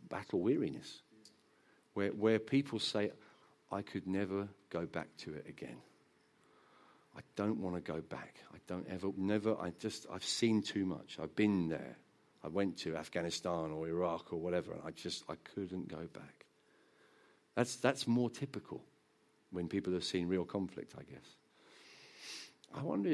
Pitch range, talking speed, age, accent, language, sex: 100-140 Hz, 160 wpm, 50-69, British, English, male